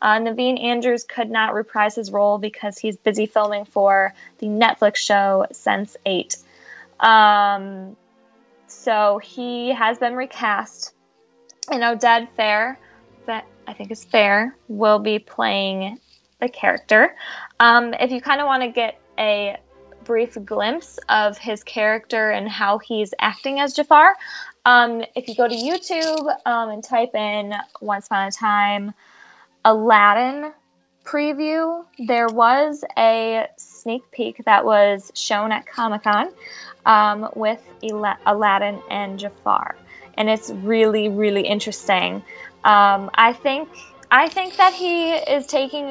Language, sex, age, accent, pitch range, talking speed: English, female, 10-29, American, 210-245 Hz, 130 wpm